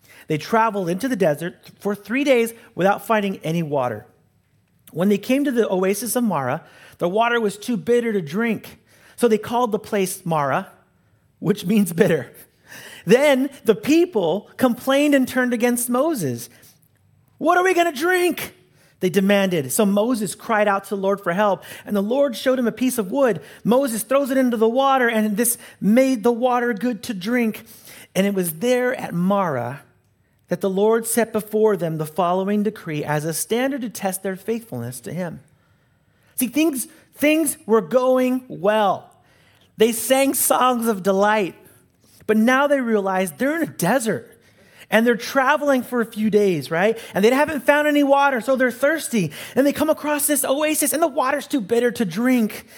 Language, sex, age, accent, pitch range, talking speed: English, male, 40-59, American, 195-260 Hz, 180 wpm